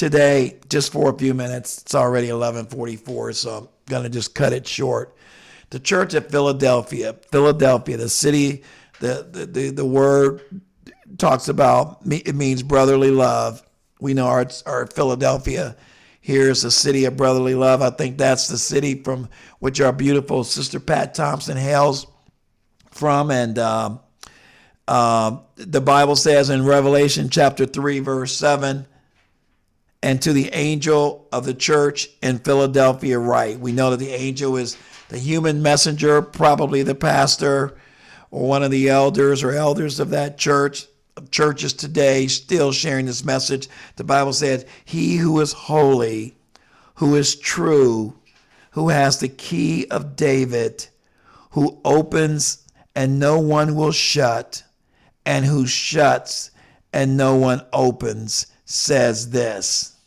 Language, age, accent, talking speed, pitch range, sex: English, 50-69, American, 140 wpm, 130-145 Hz, male